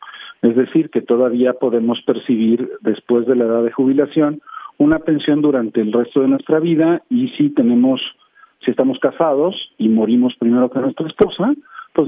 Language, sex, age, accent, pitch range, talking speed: Spanish, male, 50-69, Mexican, 120-170 Hz, 165 wpm